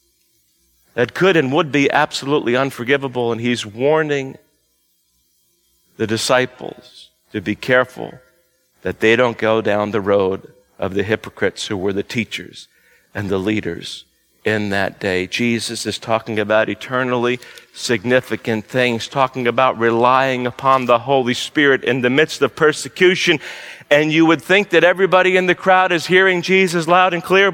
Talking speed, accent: 150 wpm, American